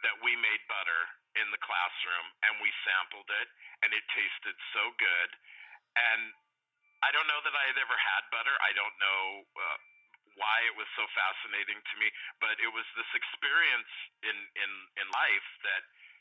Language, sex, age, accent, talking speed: English, male, 40-59, American, 170 wpm